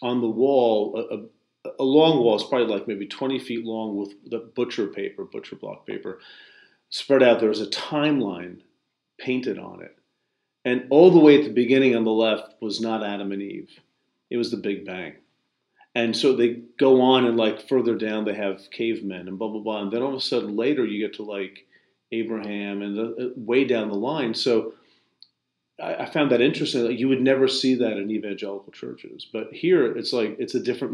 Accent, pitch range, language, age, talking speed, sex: American, 105-130 Hz, English, 40-59, 200 wpm, male